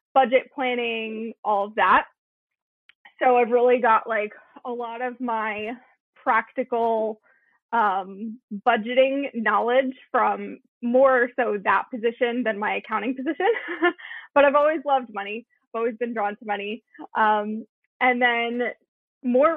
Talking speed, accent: 130 wpm, American